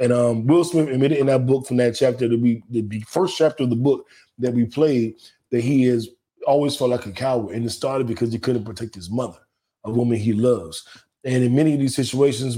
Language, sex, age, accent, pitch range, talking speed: English, male, 20-39, American, 115-135 Hz, 230 wpm